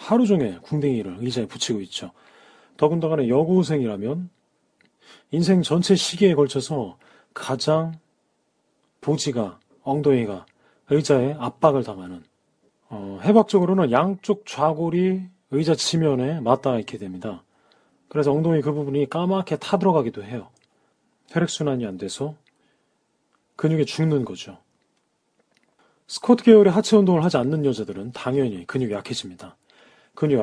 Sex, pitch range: male, 125-180 Hz